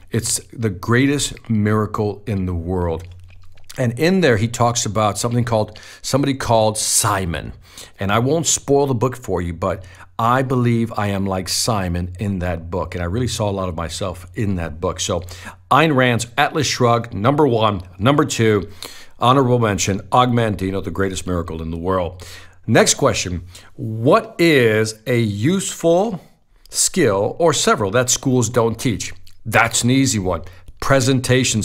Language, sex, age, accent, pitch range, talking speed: English, male, 50-69, American, 95-135 Hz, 155 wpm